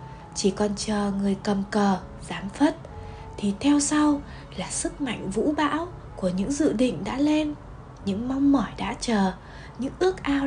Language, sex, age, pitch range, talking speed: Vietnamese, female, 20-39, 190-255 Hz, 170 wpm